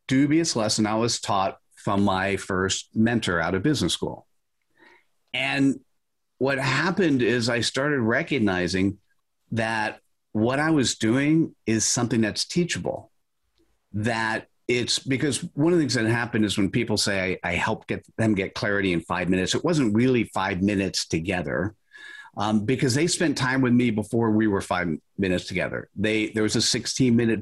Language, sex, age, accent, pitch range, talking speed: English, male, 50-69, American, 100-130 Hz, 165 wpm